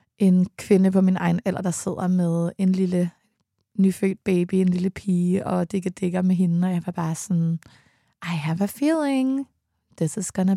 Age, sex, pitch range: 20-39, female, 180-210 Hz